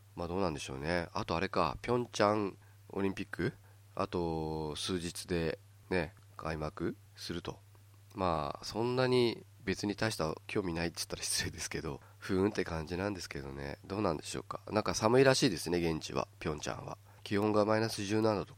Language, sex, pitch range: Japanese, male, 80-100 Hz